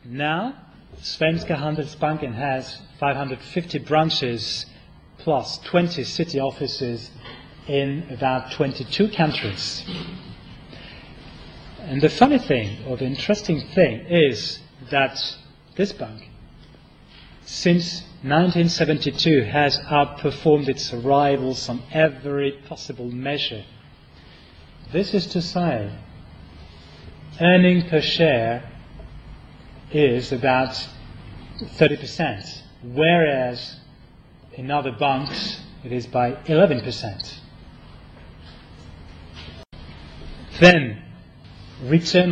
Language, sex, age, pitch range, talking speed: French, male, 30-49, 120-160 Hz, 80 wpm